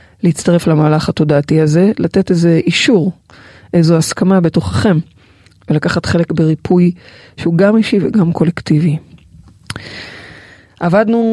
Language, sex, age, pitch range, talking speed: Hebrew, female, 30-49, 165-195 Hz, 100 wpm